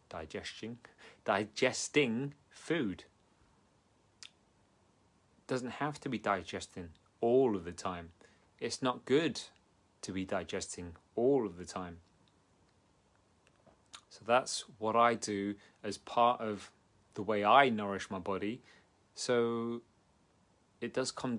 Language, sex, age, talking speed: English, male, 30-49, 115 wpm